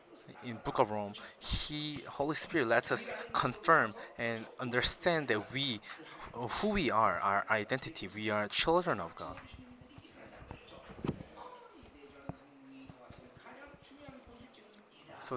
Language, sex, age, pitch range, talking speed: English, male, 20-39, 110-145 Hz, 100 wpm